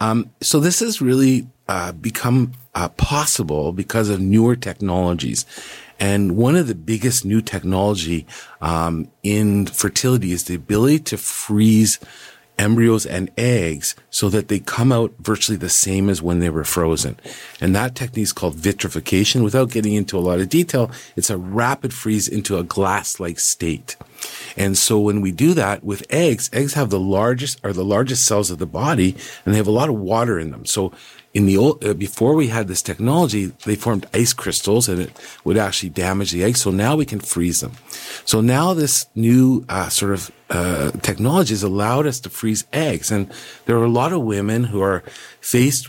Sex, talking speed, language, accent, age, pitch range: male, 190 wpm, English, American, 50-69, 95-120 Hz